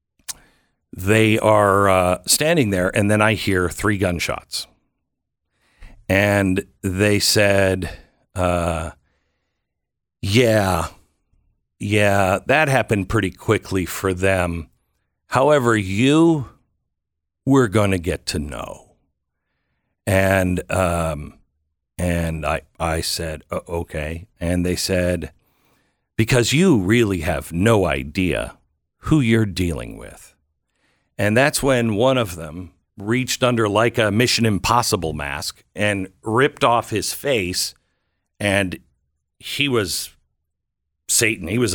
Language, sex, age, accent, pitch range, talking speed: English, male, 60-79, American, 80-110 Hz, 110 wpm